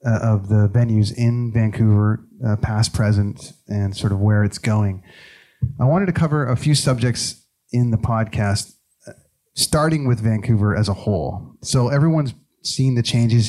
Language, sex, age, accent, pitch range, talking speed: English, male, 30-49, American, 110-130 Hz, 155 wpm